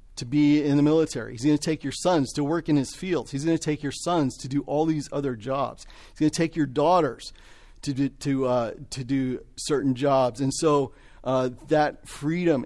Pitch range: 125-150 Hz